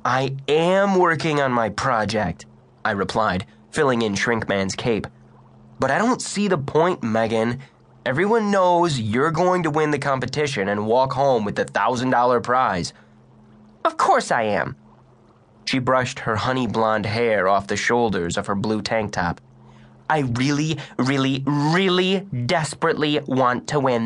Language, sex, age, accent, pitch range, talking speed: English, male, 20-39, American, 110-145 Hz, 145 wpm